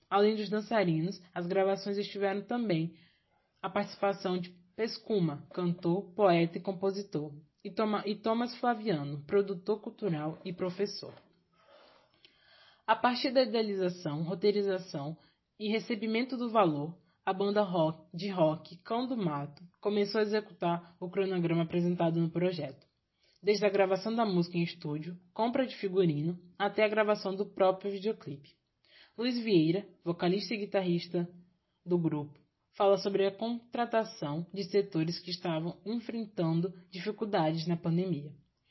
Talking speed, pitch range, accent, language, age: 125 wpm, 170-210 Hz, Brazilian, Portuguese, 20-39